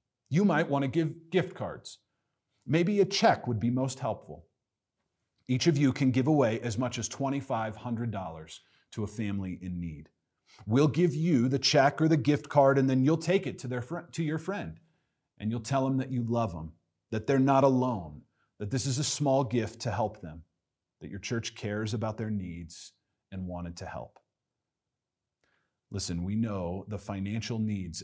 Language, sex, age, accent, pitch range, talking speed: English, male, 40-59, American, 100-135 Hz, 180 wpm